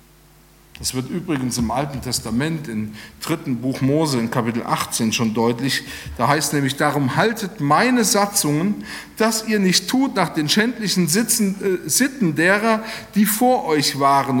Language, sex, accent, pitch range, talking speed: German, male, German, 130-180 Hz, 150 wpm